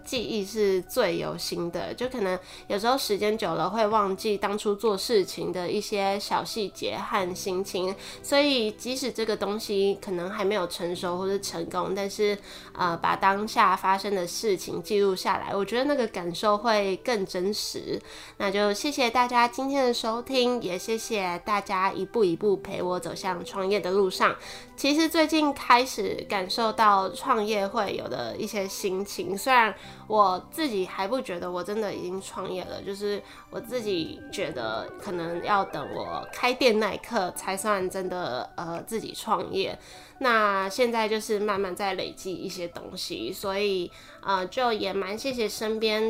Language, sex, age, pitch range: Chinese, female, 20-39, 195-230 Hz